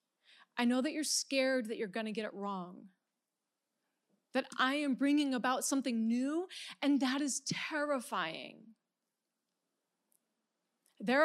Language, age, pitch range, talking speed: English, 30-49, 215-300 Hz, 130 wpm